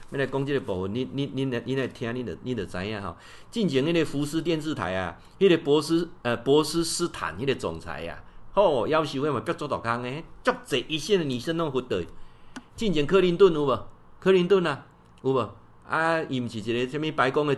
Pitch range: 115-165 Hz